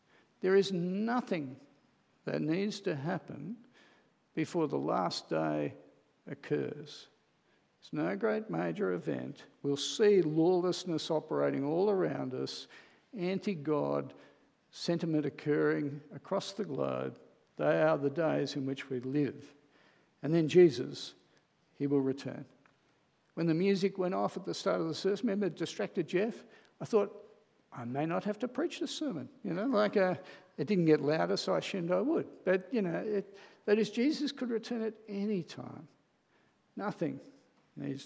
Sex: male